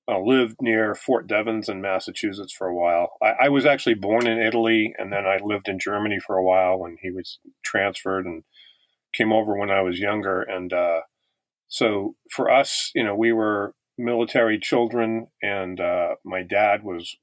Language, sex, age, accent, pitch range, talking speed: English, male, 40-59, American, 95-115 Hz, 185 wpm